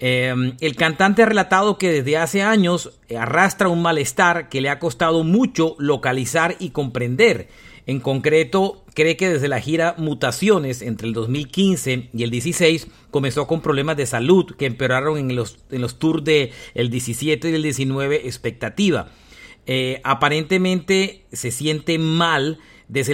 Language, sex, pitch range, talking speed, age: Spanish, male, 130-175 Hz, 150 wpm, 50-69